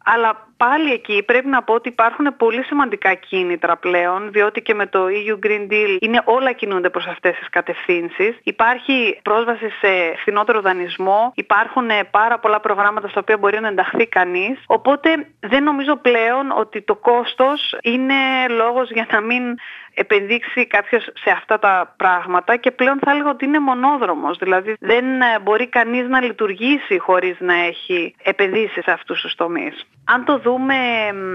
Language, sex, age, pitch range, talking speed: Greek, female, 30-49, 190-235 Hz, 155 wpm